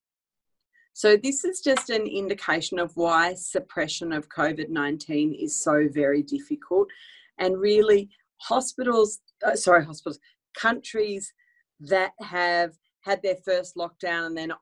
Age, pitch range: 40-59, 155-225 Hz